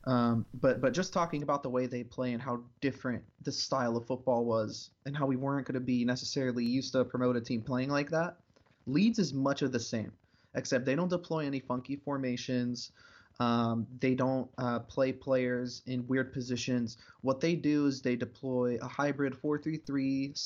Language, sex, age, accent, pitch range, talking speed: English, male, 20-39, American, 120-140 Hz, 190 wpm